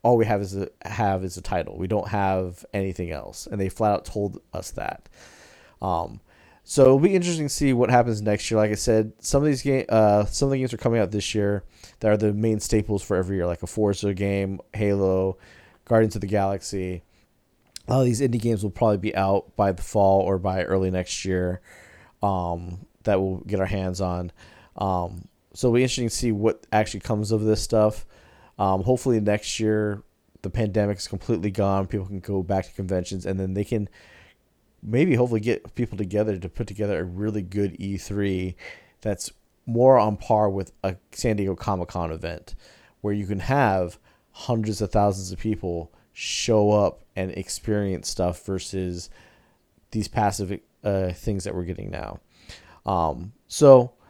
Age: 30-49